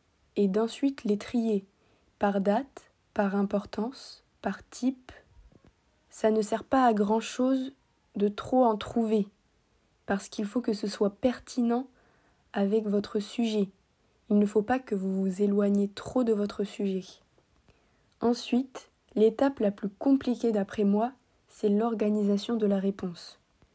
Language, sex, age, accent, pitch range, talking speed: French, female, 20-39, French, 205-230 Hz, 135 wpm